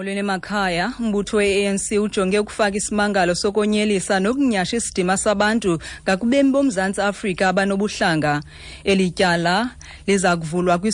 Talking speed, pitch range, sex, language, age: 100 wpm, 175-205 Hz, female, English, 30-49